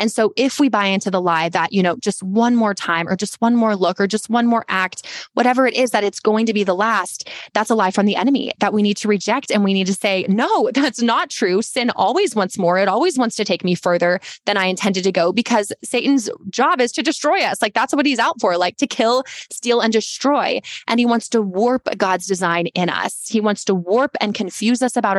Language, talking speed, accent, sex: English, 255 wpm, American, female